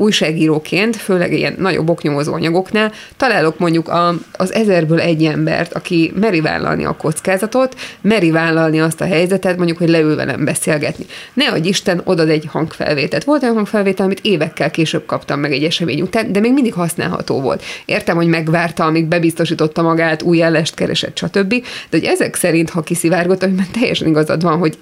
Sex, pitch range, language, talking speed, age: female, 165-195 Hz, Hungarian, 165 wpm, 20-39